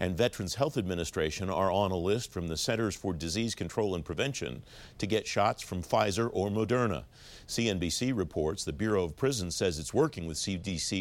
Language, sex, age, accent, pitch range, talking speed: English, male, 50-69, American, 90-115 Hz, 185 wpm